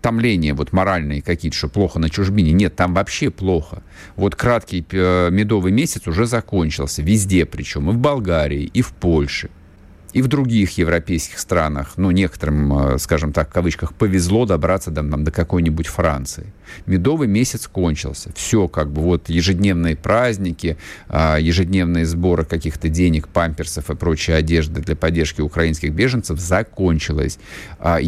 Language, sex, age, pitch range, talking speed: Russian, male, 50-69, 80-105 Hz, 135 wpm